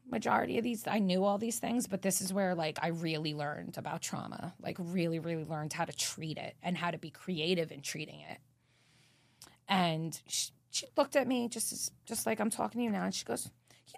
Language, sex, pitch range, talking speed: English, female, 155-230 Hz, 225 wpm